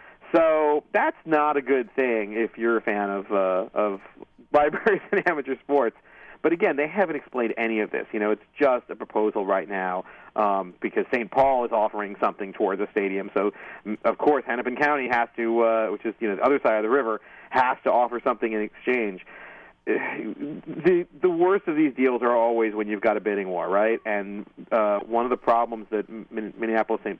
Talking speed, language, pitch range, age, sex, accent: 205 wpm, English, 105-125 Hz, 40-59, male, American